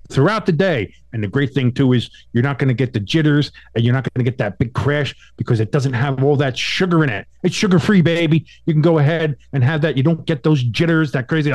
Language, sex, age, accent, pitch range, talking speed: English, male, 50-69, American, 125-175 Hz, 270 wpm